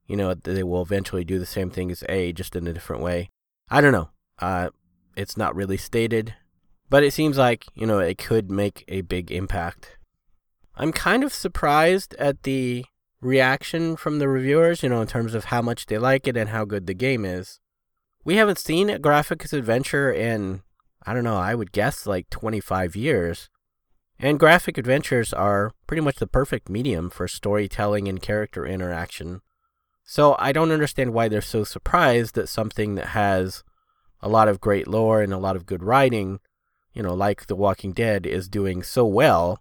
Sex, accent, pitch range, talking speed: male, American, 95-140 Hz, 190 wpm